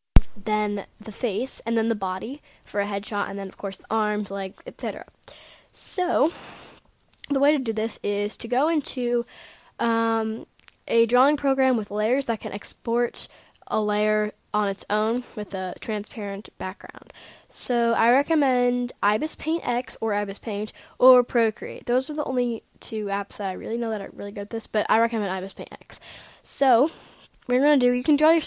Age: 10-29